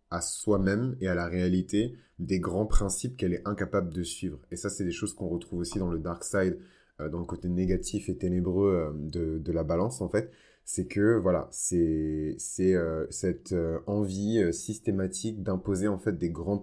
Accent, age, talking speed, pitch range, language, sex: French, 20-39, 195 wpm, 85-100 Hz, French, male